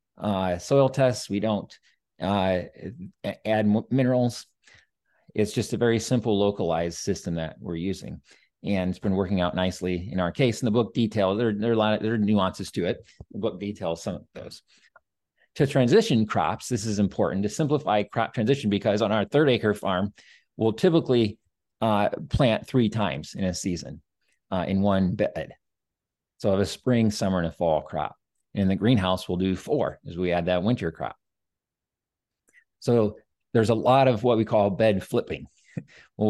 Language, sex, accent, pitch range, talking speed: English, male, American, 95-120 Hz, 180 wpm